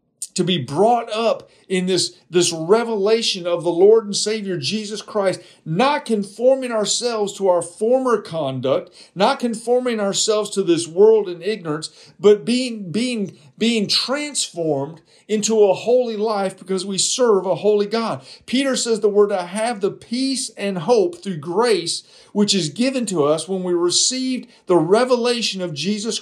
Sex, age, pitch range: male, 50-69, 185-230 Hz